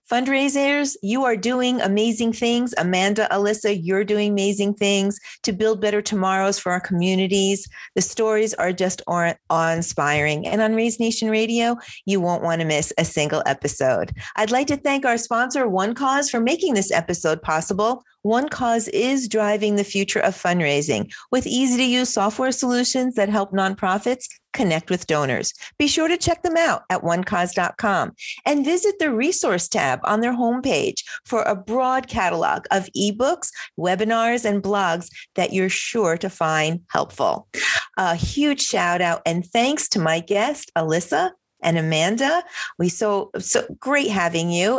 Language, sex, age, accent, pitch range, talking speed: English, female, 40-59, American, 180-250 Hz, 155 wpm